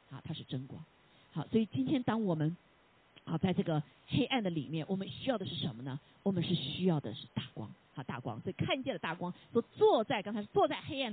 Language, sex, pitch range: Chinese, female, 150-240 Hz